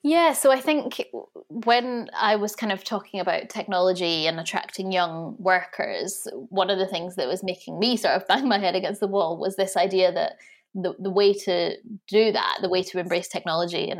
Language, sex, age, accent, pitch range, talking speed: English, female, 20-39, British, 180-230 Hz, 205 wpm